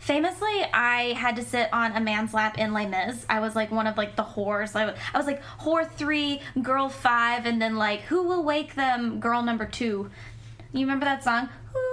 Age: 10-29